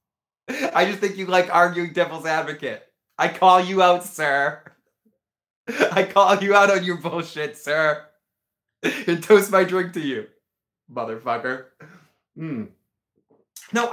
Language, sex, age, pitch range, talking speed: English, male, 30-49, 130-180 Hz, 130 wpm